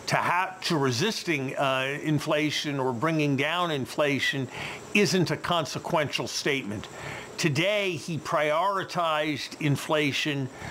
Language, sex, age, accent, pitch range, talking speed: English, male, 50-69, American, 135-155 Hz, 95 wpm